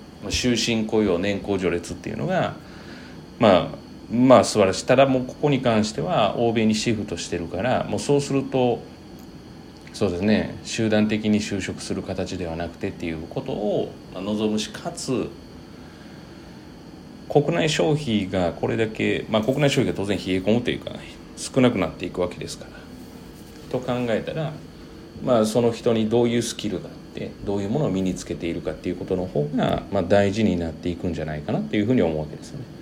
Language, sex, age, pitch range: Japanese, male, 40-59, 85-120 Hz